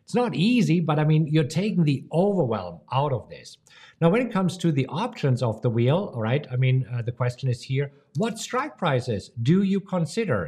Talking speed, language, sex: 220 wpm, English, male